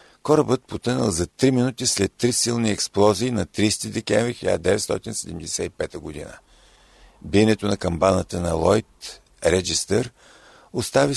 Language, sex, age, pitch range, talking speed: Bulgarian, male, 50-69, 90-115 Hz, 115 wpm